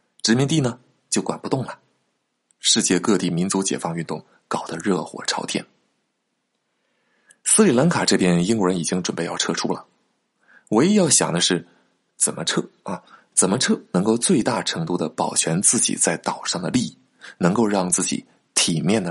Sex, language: male, Chinese